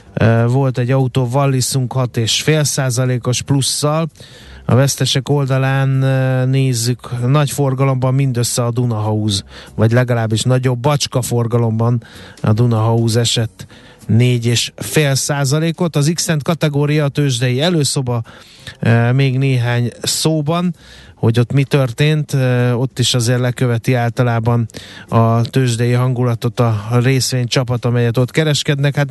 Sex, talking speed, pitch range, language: male, 105 wpm, 120-140 Hz, Hungarian